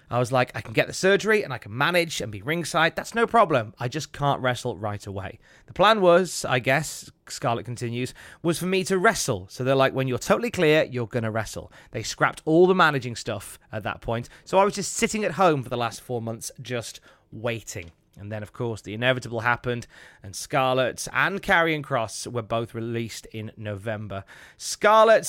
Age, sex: 30-49, male